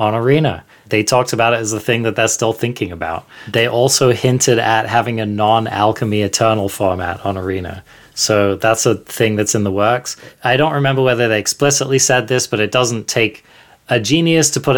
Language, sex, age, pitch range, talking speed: English, male, 20-39, 105-125 Hz, 200 wpm